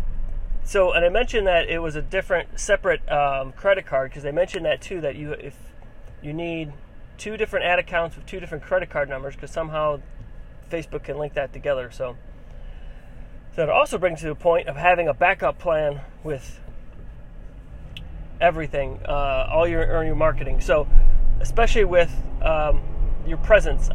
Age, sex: 30-49, male